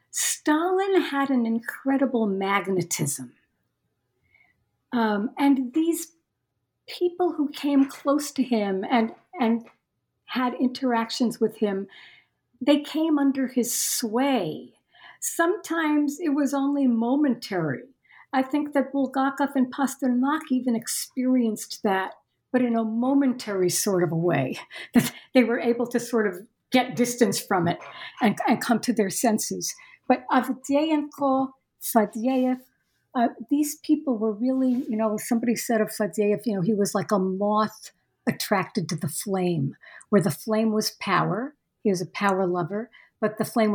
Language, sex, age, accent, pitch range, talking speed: English, female, 60-79, American, 210-275 Hz, 140 wpm